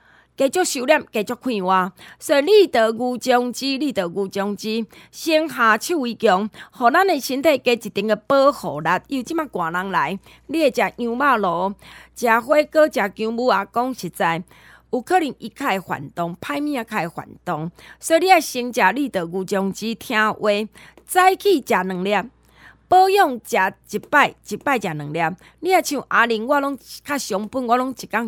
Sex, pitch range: female, 195-275 Hz